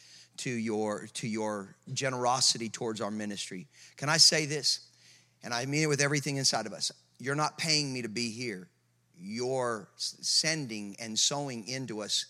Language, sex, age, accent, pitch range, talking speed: English, male, 40-59, American, 110-135 Hz, 165 wpm